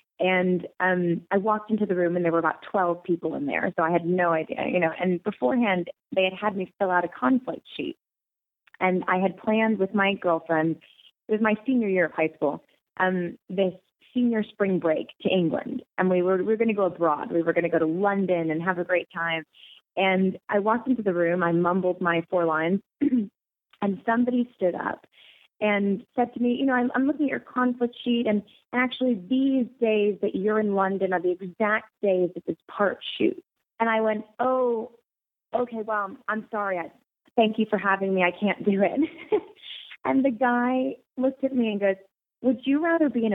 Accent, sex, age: American, female, 20-39